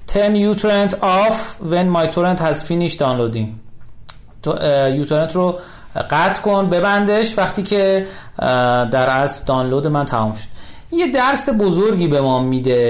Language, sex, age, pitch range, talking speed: Persian, male, 40-59, 125-180 Hz, 120 wpm